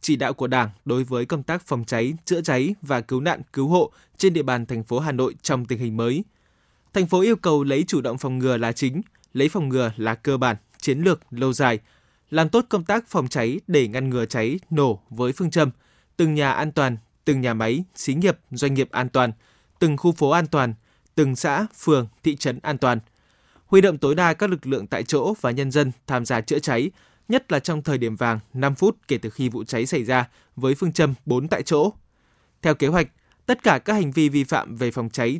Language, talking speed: Vietnamese, 235 wpm